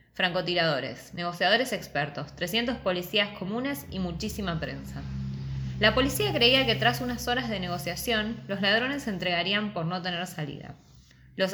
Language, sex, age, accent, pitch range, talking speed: Spanish, female, 20-39, Argentinian, 145-230 Hz, 140 wpm